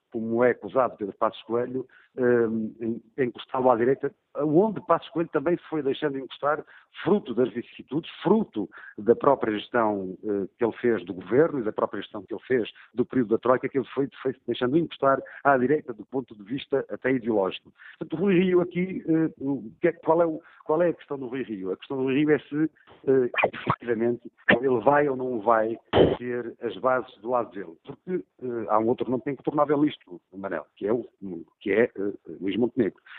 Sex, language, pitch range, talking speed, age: male, Portuguese, 120-150 Hz, 200 wpm, 50-69